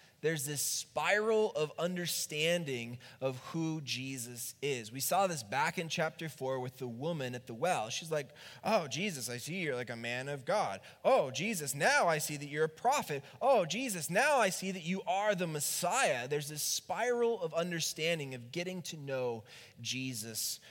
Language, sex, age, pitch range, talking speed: English, male, 20-39, 125-170 Hz, 185 wpm